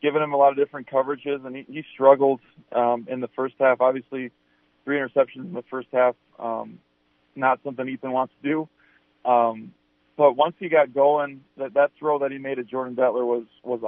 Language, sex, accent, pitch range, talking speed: English, male, American, 120-140 Hz, 205 wpm